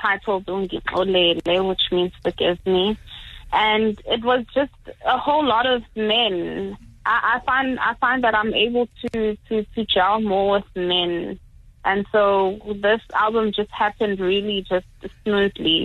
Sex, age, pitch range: female, 20-39, 180-210 Hz